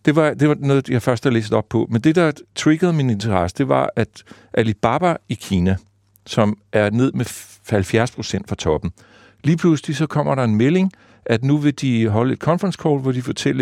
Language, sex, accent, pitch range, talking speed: Danish, male, native, 105-135 Hz, 215 wpm